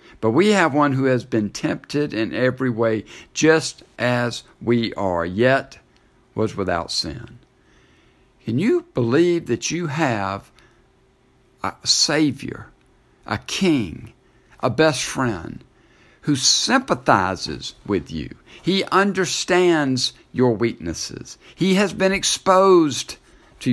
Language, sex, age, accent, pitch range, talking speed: English, male, 60-79, American, 120-170 Hz, 115 wpm